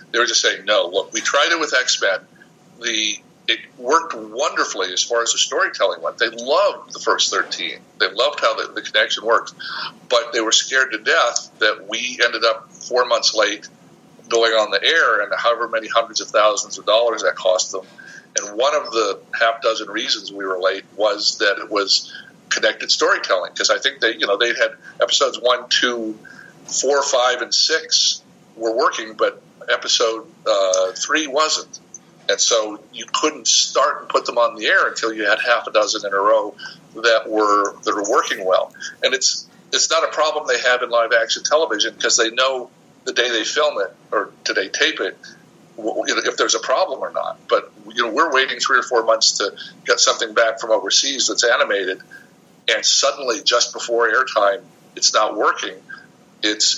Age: 50-69